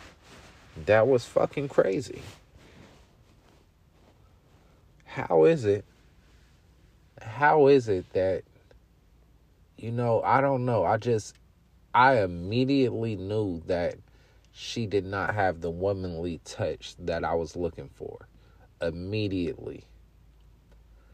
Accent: American